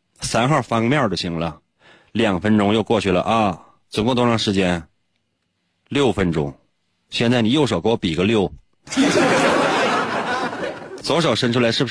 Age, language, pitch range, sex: 30-49, Chinese, 90-120 Hz, male